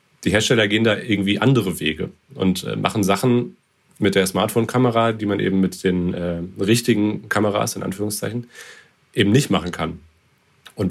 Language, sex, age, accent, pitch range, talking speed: German, male, 30-49, German, 95-120 Hz, 155 wpm